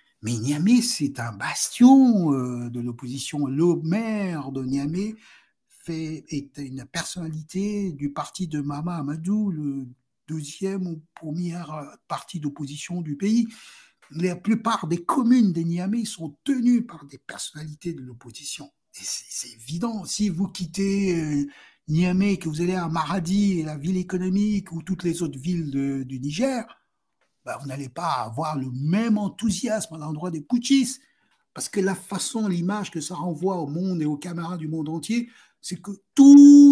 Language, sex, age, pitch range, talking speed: French, male, 60-79, 150-210 Hz, 155 wpm